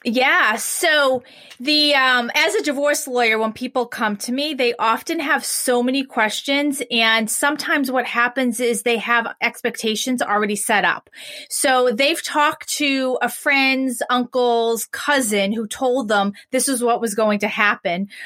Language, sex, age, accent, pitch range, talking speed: English, female, 30-49, American, 215-260 Hz, 160 wpm